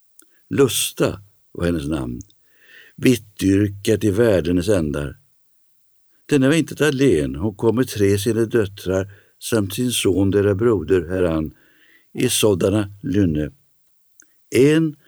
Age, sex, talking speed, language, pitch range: 60-79, male, 110 wpm, Swedish, 90-120 Hz